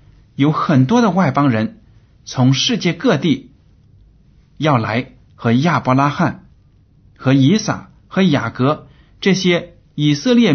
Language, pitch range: Chinese, 105-145 Hz